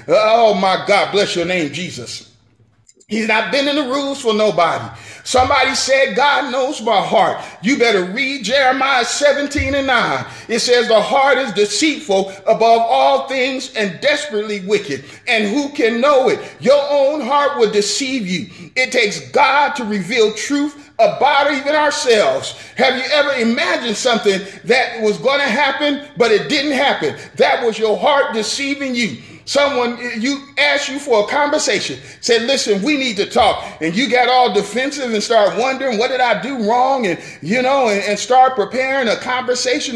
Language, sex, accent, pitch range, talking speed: English, male, American, 215-280 Hz, 175 wpm